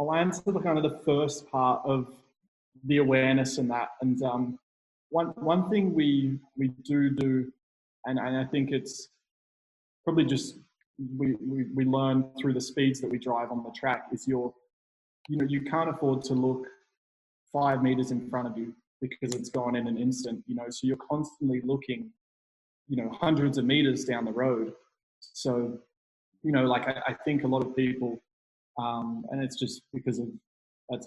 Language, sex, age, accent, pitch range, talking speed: English, male, 20-39, Australian, 120-140 Hz, 185 wpm